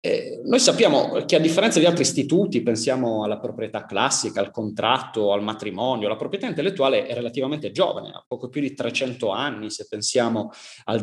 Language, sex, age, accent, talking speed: Italian, male, 30-49, native, 170 wpm